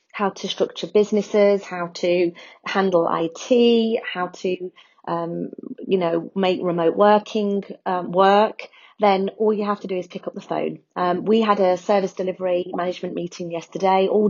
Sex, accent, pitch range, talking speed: female, British, 175-200 Hz, 165 wpm